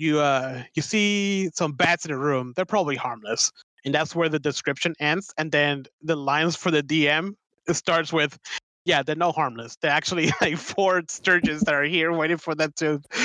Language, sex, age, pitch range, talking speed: English, male, 20-39, 145-175 Hz, 200 wpm